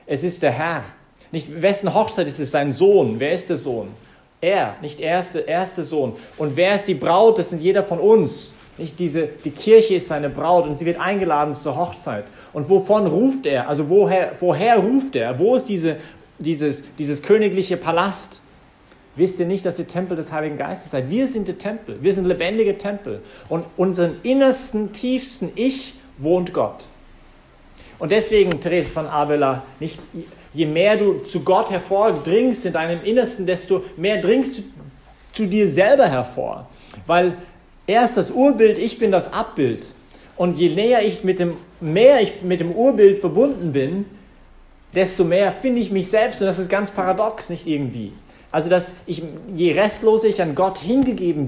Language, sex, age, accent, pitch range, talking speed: English, male, 40-59, German, 165-205 Hz, 175 wpm